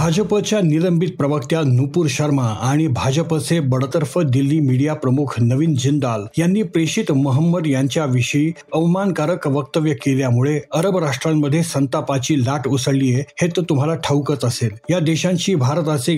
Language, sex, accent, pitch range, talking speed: Marathi, male, native, 130-165 Hz, 120 wpm